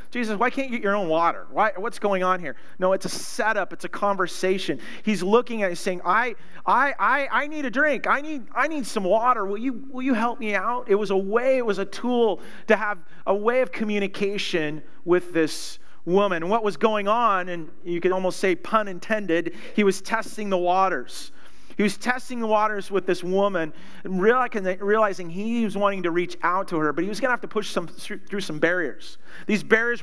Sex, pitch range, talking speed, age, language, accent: male, 175-215 Hz, 215 wpm, 40-59, English, American